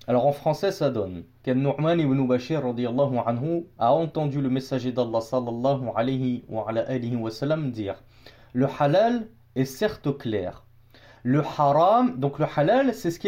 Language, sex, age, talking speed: French, male, 30-49, 160 wpm